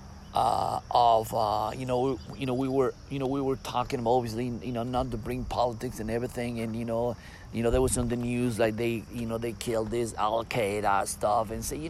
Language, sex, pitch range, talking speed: English, male, 110-135 Hz, 235 wpm